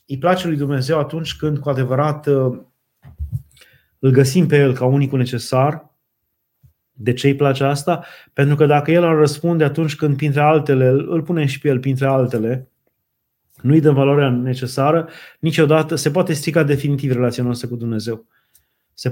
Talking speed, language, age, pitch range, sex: 165 wpm, Romanian, 30-49, 125-155 Hz, male